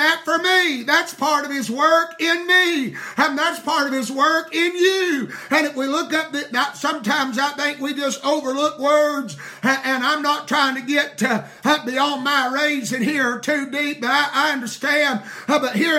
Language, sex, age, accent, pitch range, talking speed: English, male, 50-69, American, 270-315 Hz, 175 wpm